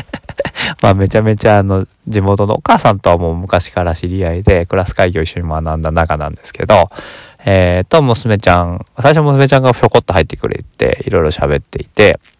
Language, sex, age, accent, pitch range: Japanese, male, 20-39, native, 80-120 Hz